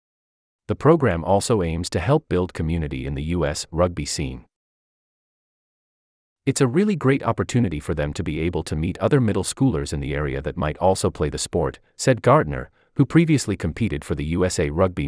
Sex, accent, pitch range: male, American, 75-125 Hz